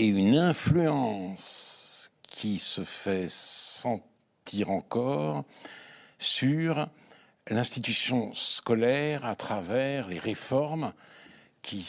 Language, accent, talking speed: French, French, 80 wpm